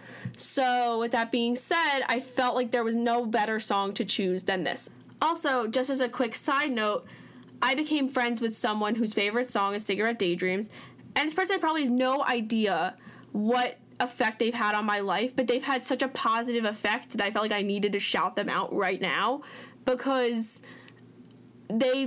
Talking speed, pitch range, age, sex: 190 wpm, 230-270 Hz, 10-29, female